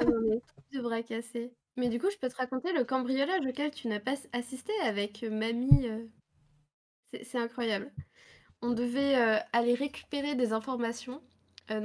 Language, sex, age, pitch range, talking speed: French, female, 20-39, 220-260 Hz, 155 wpm